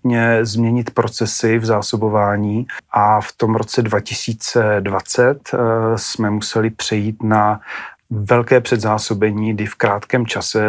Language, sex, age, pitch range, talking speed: Slovak, male, 40-59, 110-115 Hz, 105 wpm